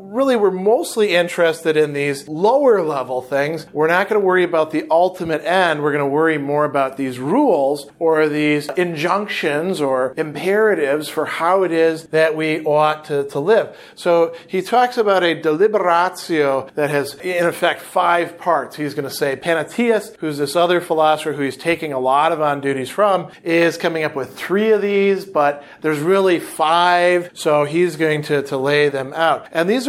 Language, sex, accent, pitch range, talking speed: English, male, American, 150-185 Hz, 185 wpm